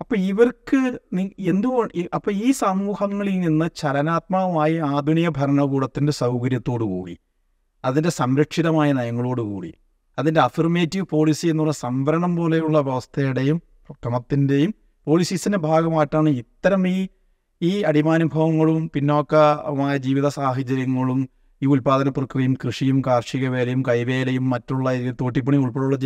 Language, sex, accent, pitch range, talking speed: Malayalam, male, native, 125-155 Hz, 95 wpm